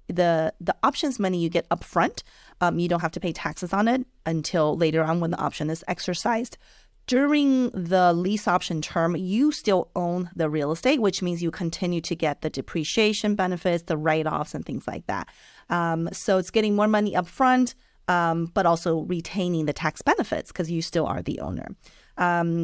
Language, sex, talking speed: English, female, 190 wpm